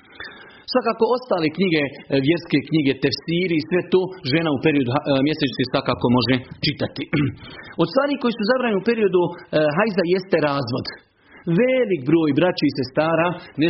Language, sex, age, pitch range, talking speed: Croatian, male, 40-59, 140-180 Hz, 150 wpm